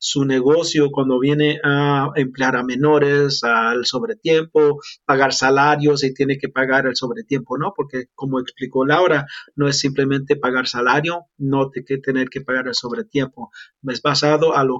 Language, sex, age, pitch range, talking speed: Spanish, male, 40-59, 130-155 Hz, 160 wpm